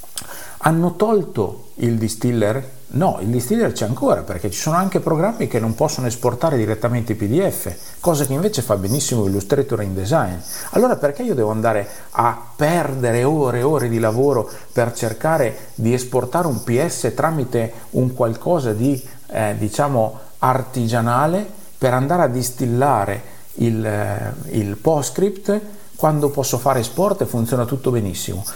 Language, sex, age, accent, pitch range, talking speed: Italian, male, 50-69, native, 110-145 Hz, 145 wpm